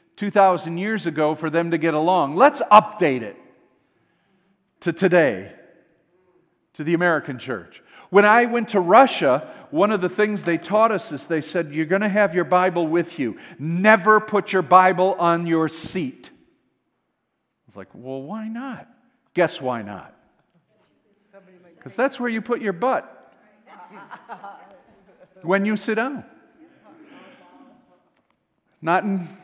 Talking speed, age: 140 wpm, 50-69